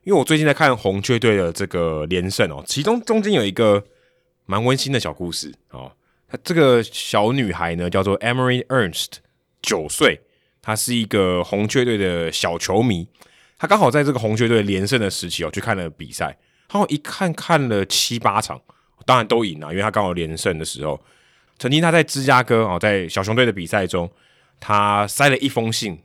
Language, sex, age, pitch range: Chinese, male, 20-39, 90-120 Hz